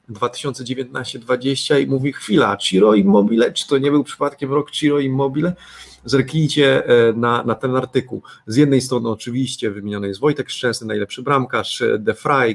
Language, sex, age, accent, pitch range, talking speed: Polish, male, 30-49, native, 110-135 Hz, 150 wpm